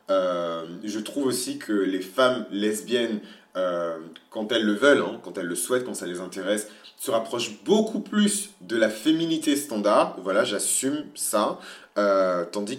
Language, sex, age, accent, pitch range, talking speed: French, male, 30-49, French, 95-130 Hz, 160 wpm